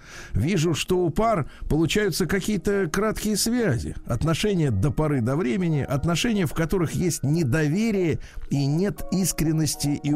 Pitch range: 90-155 Hz